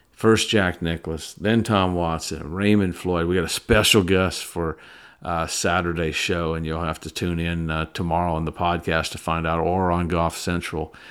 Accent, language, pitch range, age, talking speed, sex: American, English, 80-100 Hz, 50-69, 190 wpm, male